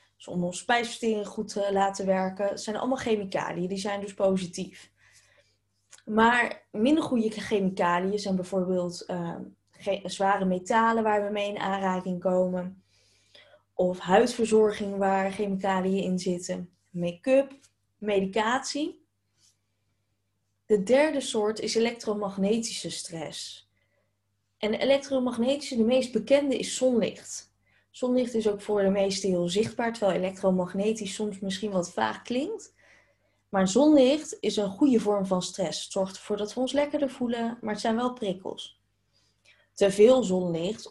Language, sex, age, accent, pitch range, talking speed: Dutch, female, 20-39, Dutch, 175-225 Hz, 130 wpm